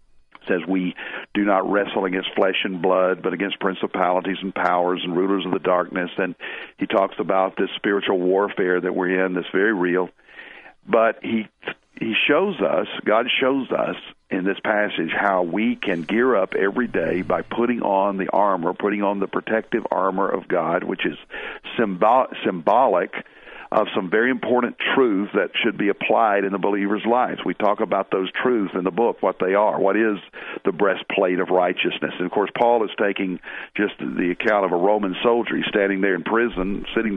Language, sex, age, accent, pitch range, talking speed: English, male, 50-69, American, 95-115 Hz, 185 wpm